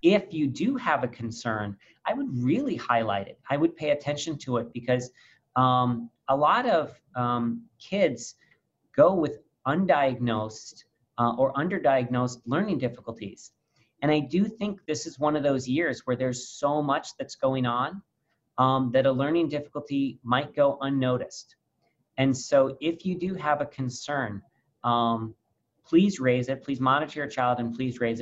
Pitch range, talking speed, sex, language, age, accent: 120-145 Hz, 160 wpm, male, English, 40-59, American